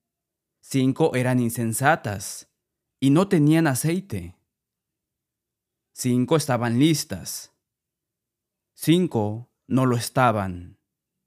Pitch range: 110-140 Hz